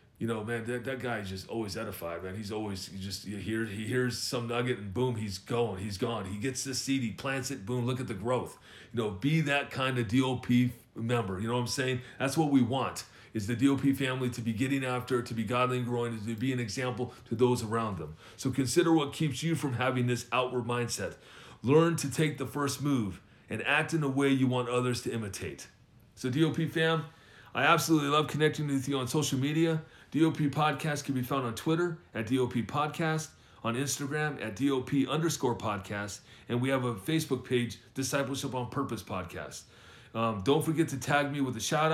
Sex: male